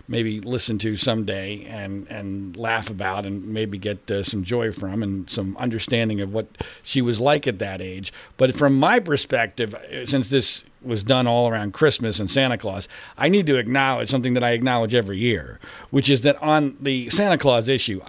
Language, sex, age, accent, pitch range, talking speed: English, male, 50-69, American, 110-140 Hz, 190 wpm